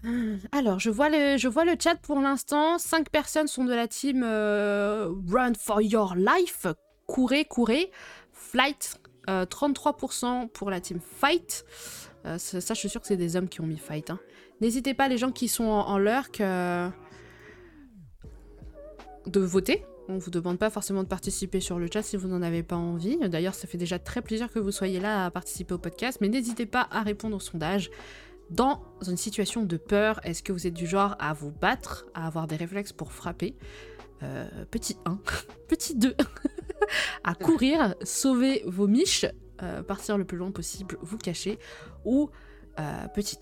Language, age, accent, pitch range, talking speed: French, 20-39, French, 180-250 Hz, 185 wpm